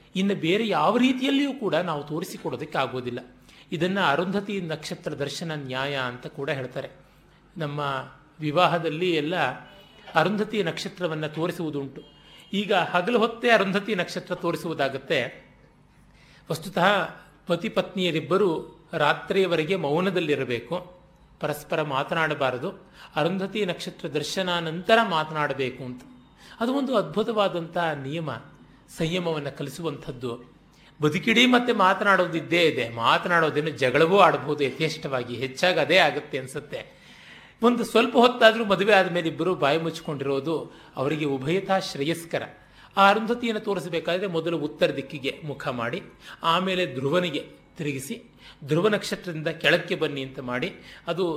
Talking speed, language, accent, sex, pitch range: 100 wpm, Kannada, native, male, 150-190 Hz